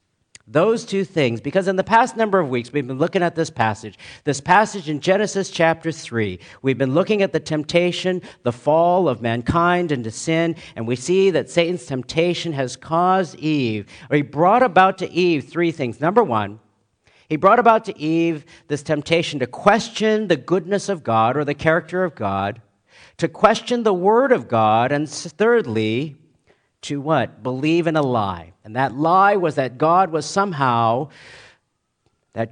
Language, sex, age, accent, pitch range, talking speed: English, male, 50-69, American, 135-195 Hz, 170 wpm